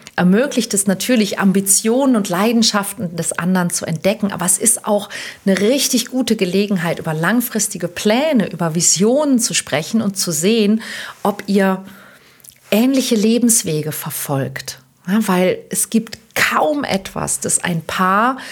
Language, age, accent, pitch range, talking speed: German, 40-59, German, 175-225 Hz, 135 wpm